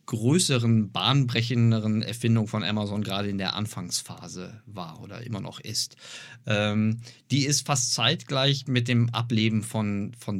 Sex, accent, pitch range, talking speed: male, German, 110-135 Hz, 140 wpm